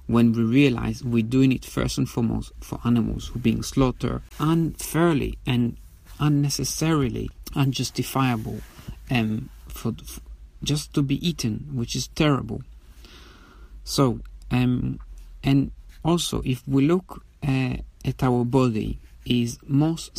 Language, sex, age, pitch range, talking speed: English, male, 50-69, 110-135 Hz, 125 wpm